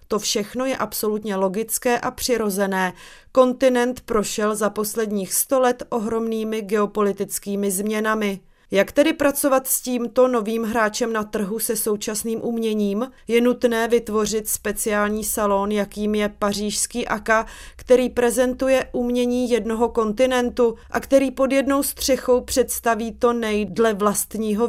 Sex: female